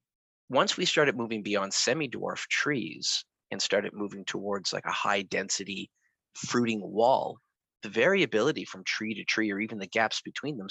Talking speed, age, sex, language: 160 wpm, 30-49, male, English